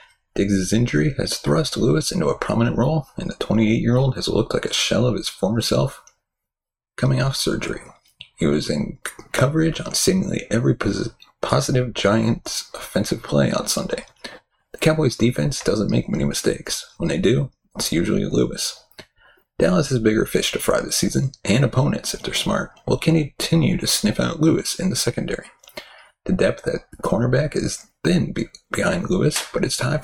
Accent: American